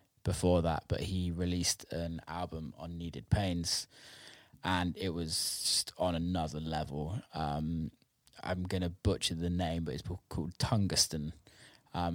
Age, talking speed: 20-39, 145 wpm